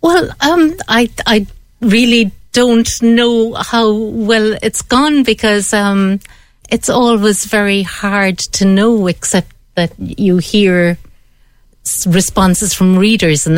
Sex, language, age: female, English, 60-79